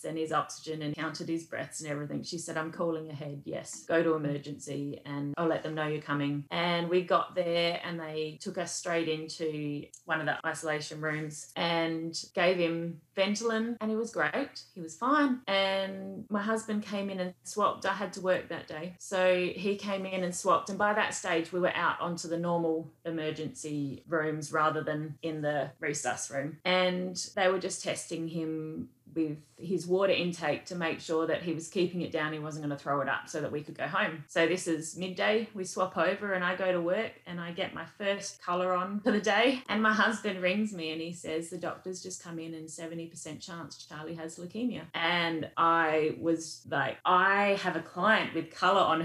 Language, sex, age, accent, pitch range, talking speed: English, female, 30-49, Australian, 155-185 Hz, 210 wpm